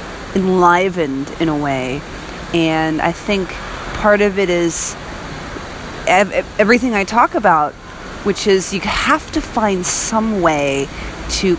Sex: female